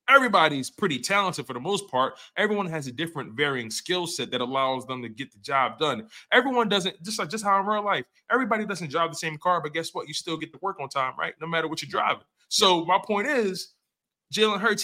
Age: 20-39